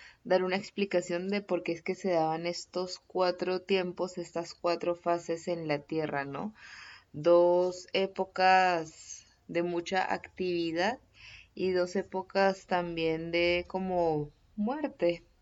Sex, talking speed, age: female, 125 wpm, 20-39